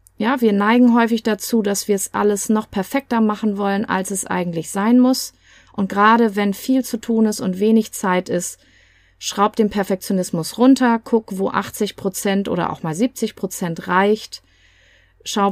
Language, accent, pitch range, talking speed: German, German, 175-220 Hz, 165 wpm